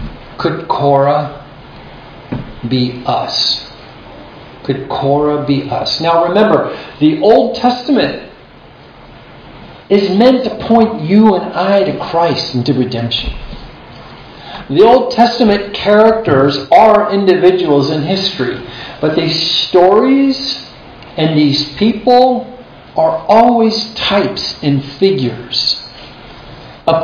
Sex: male